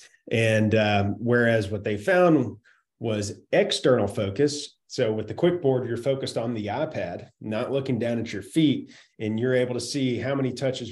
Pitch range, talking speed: 110-130 Hz, 180 wpm